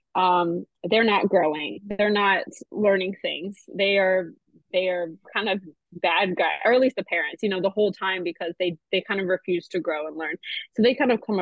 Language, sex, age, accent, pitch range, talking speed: English, female, 20-39, American, 170-200 Hz, 215 wpm